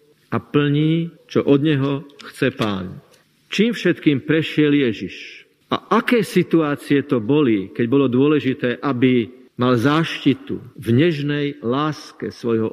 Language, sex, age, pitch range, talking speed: Slovak, male, 50-69, 130-165 Hz, 125 wpm